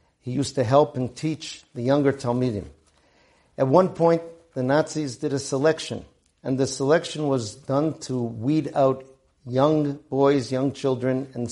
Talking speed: 155 wpm